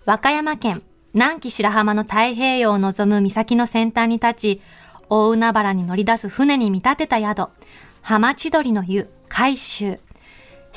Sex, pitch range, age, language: female, 205-250 Hz, 20-39, Japanese